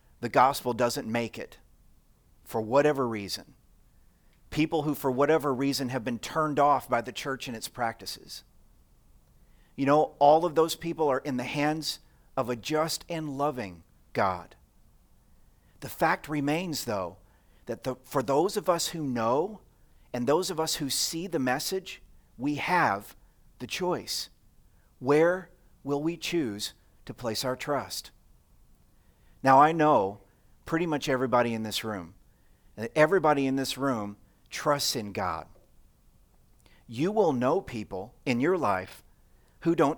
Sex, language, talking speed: male, English, 145 wpm